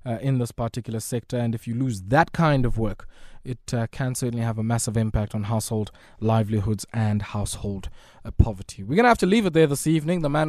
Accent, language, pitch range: South African, English, 115-145 Hz